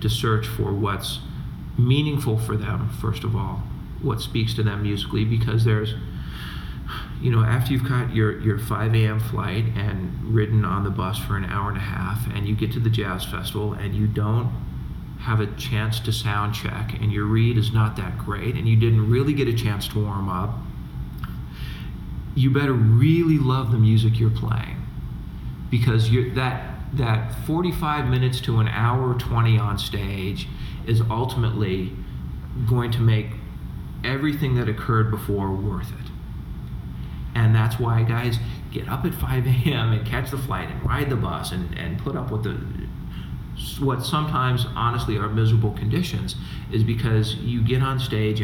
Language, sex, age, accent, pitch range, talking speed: English, male, 40-59, American, 105-120 Hz, 170 wpm